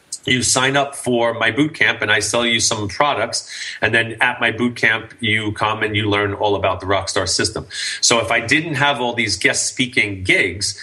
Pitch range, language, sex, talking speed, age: 105-130 Hz, English, male, 215 wpm, 30-49